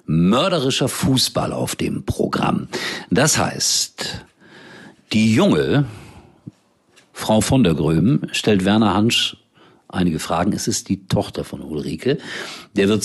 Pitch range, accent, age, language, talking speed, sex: 95-135 Hz, German, 50-69, German, 120 wpm, male